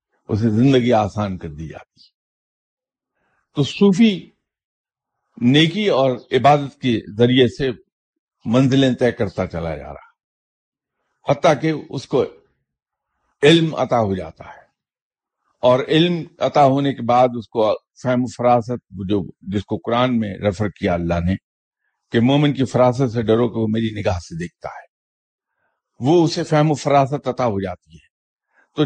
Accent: Indian